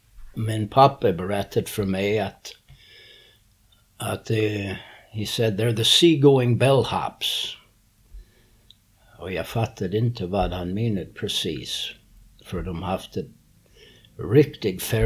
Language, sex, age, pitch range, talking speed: Swedish, male, 60-79, 95-115 Hz, 110 wpm